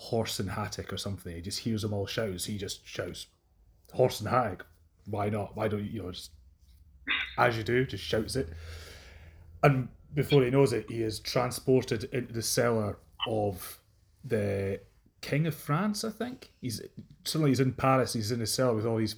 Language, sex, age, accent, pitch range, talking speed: English, male, 30-49, British, 95-125 Hz, 190 wpm